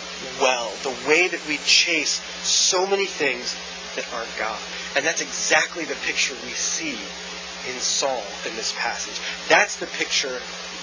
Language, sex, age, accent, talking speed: English, male, 30-49, American, 150 wpm